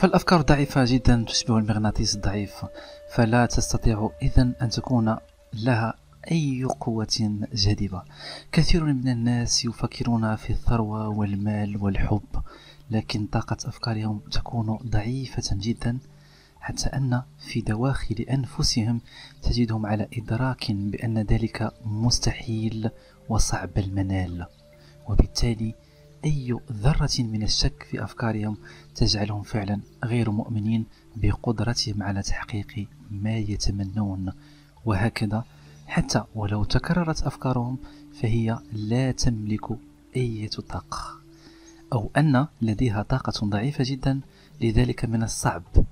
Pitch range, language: 105-130 Hz, Arabic